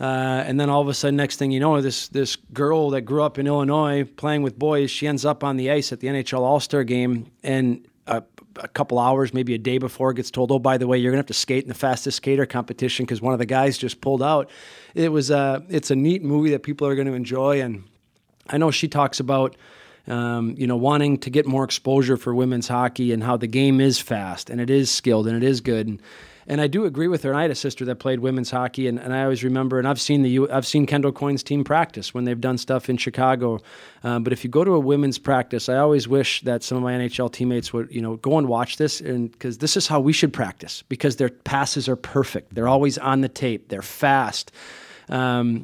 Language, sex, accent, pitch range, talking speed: English, male, American, 125-140 Hz, 255 wpm